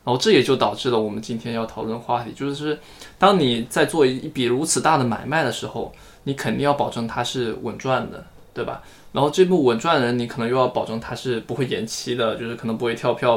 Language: Chinese